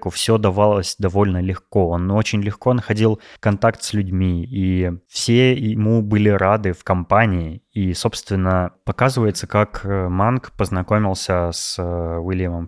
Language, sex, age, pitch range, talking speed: Russian, male, 20-39, 90-110 Hz, 125 wpm